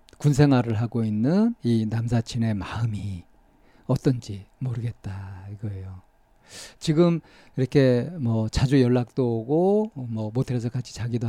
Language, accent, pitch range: Korean, native, 115-145 Hz